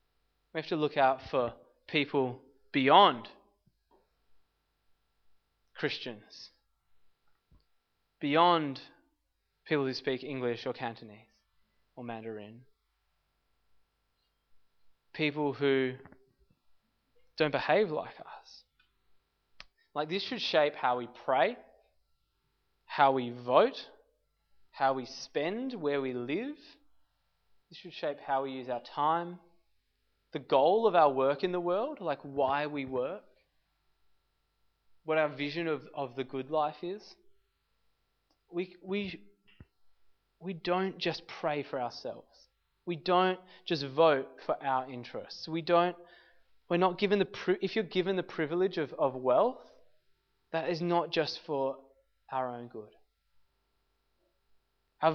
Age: 20-39